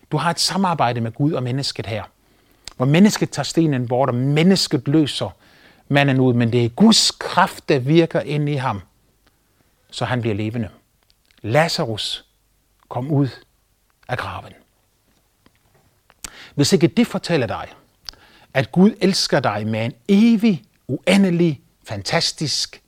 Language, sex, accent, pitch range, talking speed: Danish, male, native, 140-200 Hz, 135 wpm